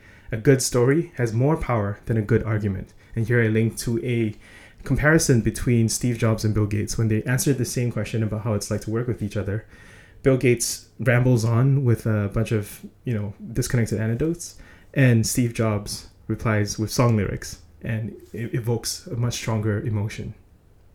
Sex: male